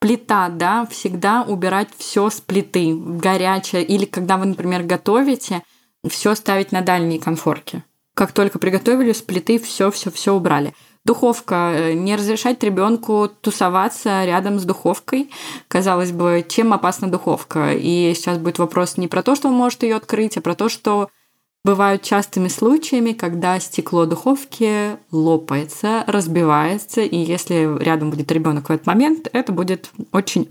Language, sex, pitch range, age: Russian, female, 175-220 Hz, 20-39